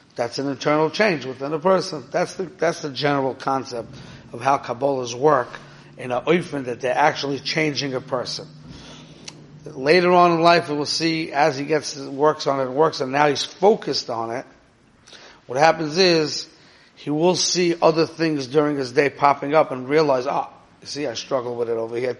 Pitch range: 130-155 Hz